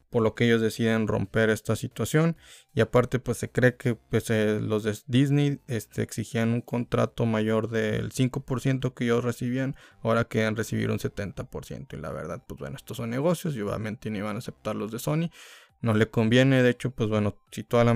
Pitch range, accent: 110-135 Hz, Mexican